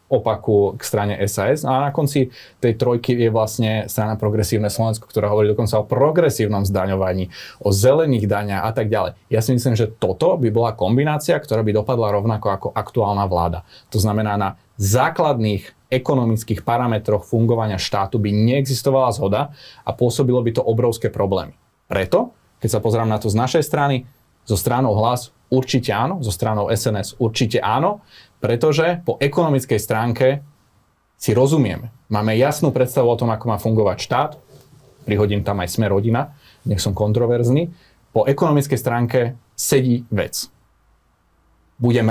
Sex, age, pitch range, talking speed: male, 30-49, 105-130 Hz, 150 wpm